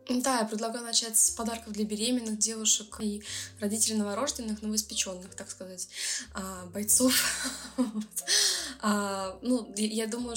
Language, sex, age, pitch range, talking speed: Russian, female, 20-39, 195-225 Hz, 120 wpm